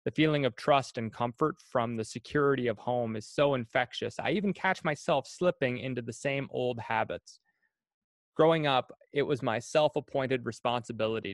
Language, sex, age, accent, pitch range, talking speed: English, male, 30-49, American, 120-155 Hz, 165 wpm